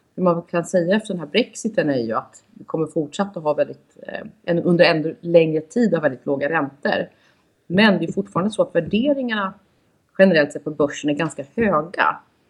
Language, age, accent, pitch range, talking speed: Swedish, 30-49, native, 145-185 Hz, 180 wpm